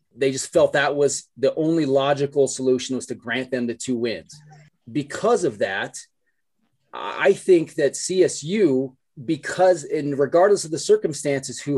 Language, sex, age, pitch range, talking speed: English, male, 30-49, 130-155 Hz, 155 wpm